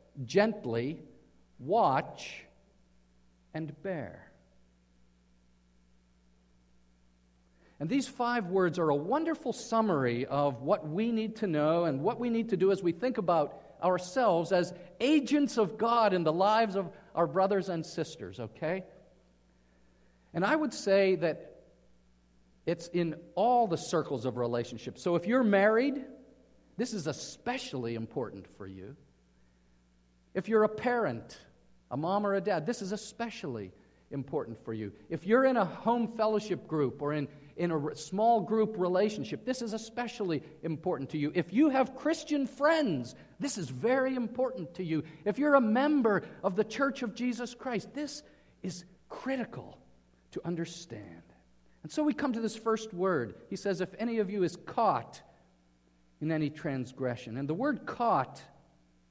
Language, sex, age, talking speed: English, male, 50-69, 150 wpm